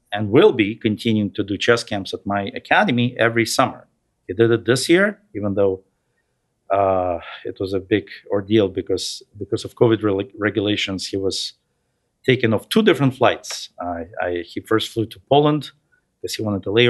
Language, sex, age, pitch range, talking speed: English, male, 50-69, 100-120 Hz, 175 wpm